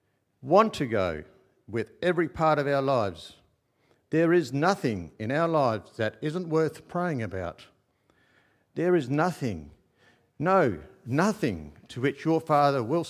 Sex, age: male, 50-69